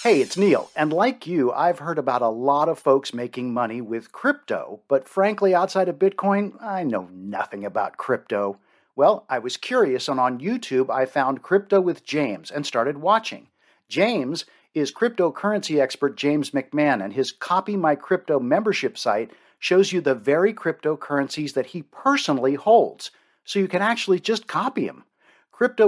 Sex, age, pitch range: male, 50-69, 135-190 Hz